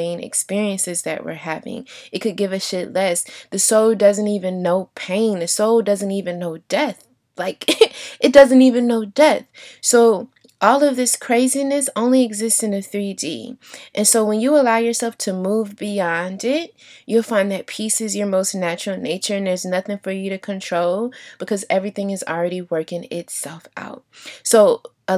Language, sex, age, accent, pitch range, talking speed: English, female, 20-39, American, 180-225 Hz, 175 wpm